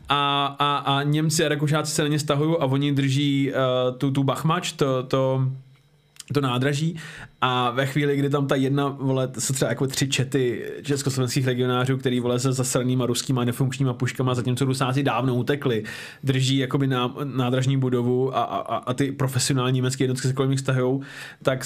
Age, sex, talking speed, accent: 20-39, male, 175 wpm, native